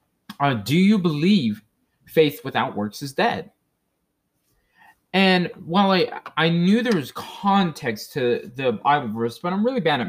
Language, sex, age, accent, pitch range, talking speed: English, male, 20-39, American, 135-200 Hz, 155 wpm